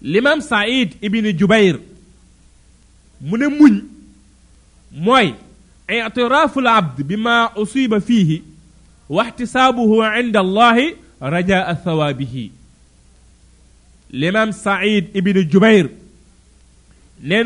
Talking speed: 80 wpm